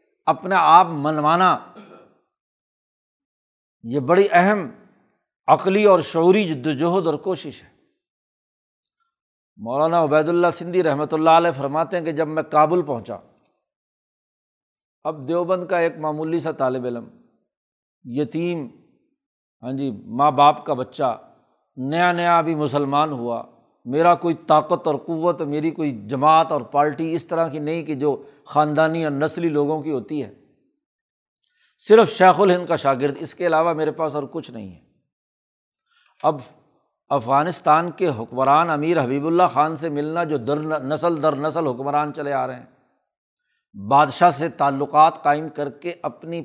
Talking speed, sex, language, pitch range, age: 145 wpm, male, Urdu, 145-170 Hz, 60-79